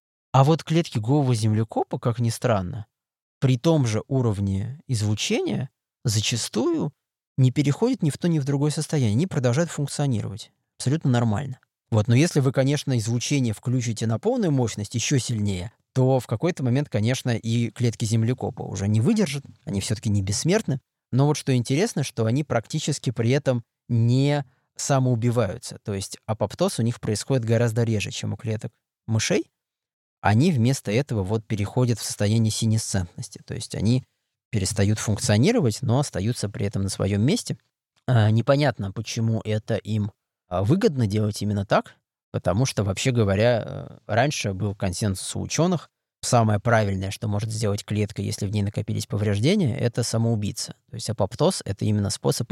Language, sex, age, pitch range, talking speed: Russian, male, 20-39, 105-135 Hz, 155 wpm